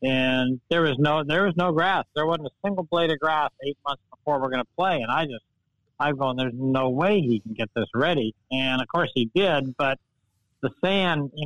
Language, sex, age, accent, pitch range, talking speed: English, male, 60-79, American, 130-160 Hz, 230 wpm